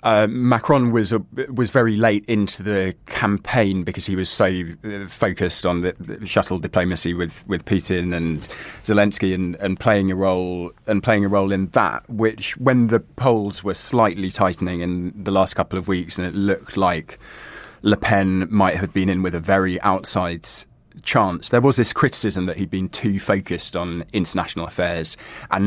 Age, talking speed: 20-39, 180 wpm